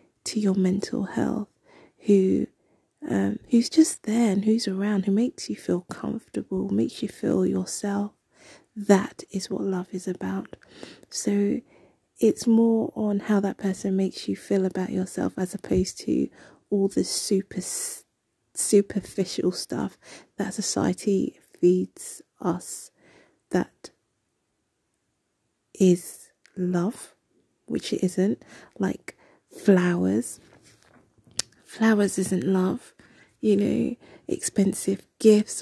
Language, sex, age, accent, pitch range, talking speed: English, female, 30-49, British, 185-215 Hz, 110 wpm